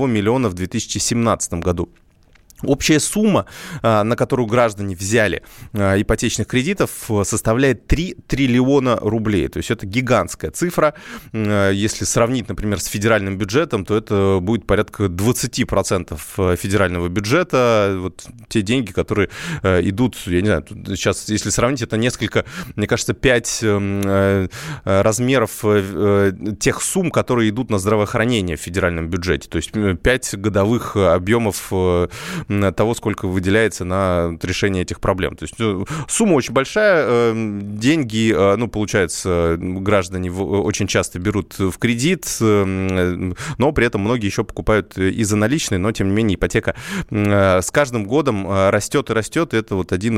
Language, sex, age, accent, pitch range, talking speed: Russian, male, 20-39, native, 95-120 Hz, 130 wpm